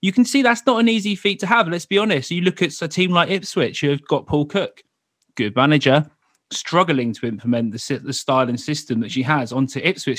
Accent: British